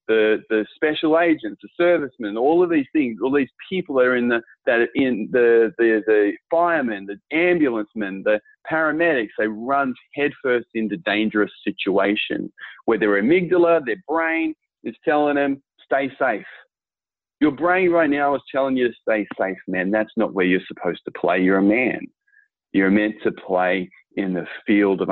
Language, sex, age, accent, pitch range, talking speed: English, male, 30-49, Australian, 100-140 Hz, 175 wpm